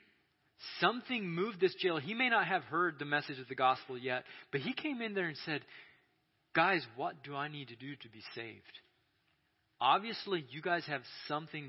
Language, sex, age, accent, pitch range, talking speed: English, male, 30-49, American, 135-195 Hz, 190 wpm